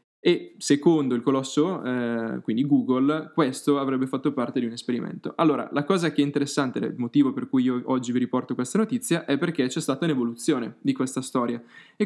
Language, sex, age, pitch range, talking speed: Italian, male, 10-29, 130-150 Hz, 195 wpm